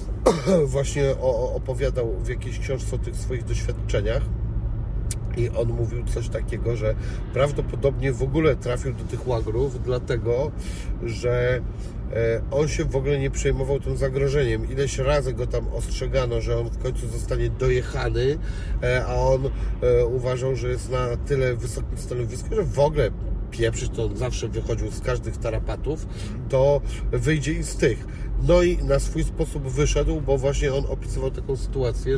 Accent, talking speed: native, 150 wpm